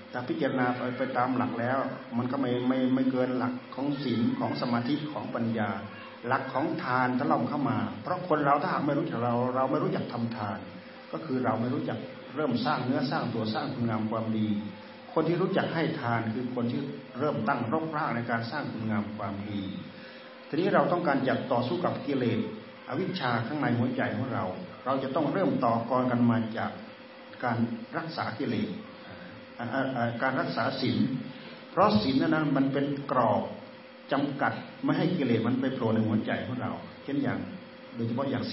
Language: Thai